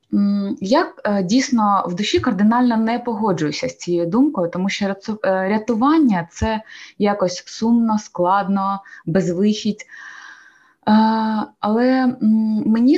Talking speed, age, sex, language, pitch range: 95 wpm, 20-39, female, Ukrainian, 190-230 Hz